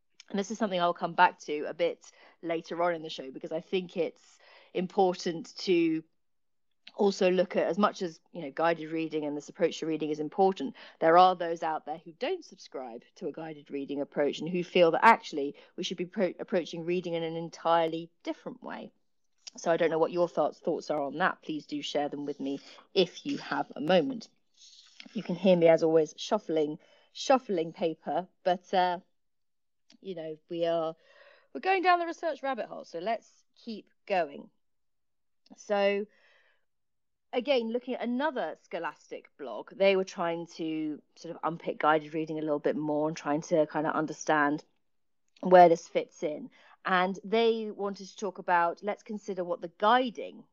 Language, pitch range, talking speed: English, 160-220 Hz, 185 wpm